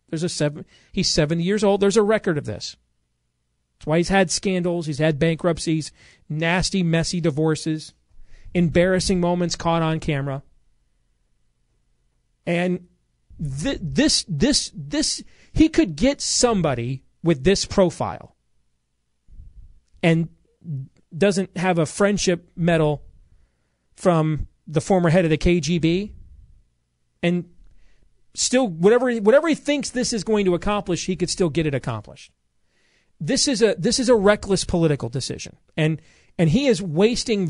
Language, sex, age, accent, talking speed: English, male, 40-59, American, 135 wpm